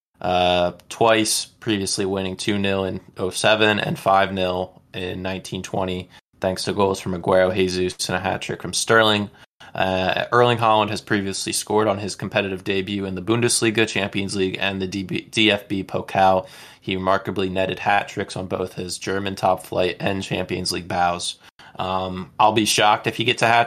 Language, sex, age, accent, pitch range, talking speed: English, male, 20-39, American, 95-110 Hz, 175 wpm